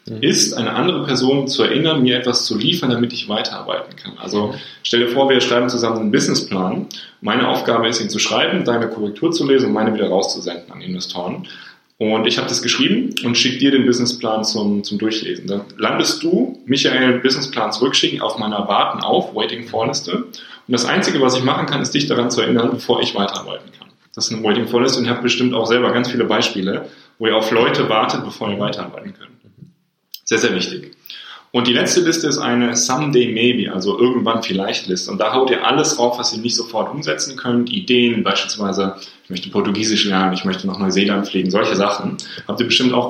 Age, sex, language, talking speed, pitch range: 10-29, male, German, 195 wpm, 105-125 Hz